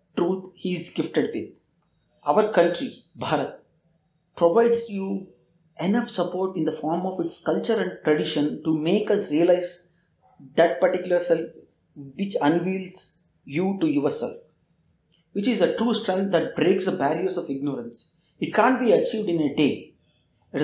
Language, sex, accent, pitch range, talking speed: English, male, Indian, 160-205 Hz, 150 wpm